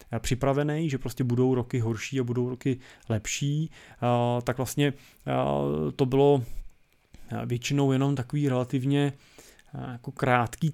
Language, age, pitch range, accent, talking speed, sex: Czech, 20-39, 115-130 Hz, native, 105 wpm, male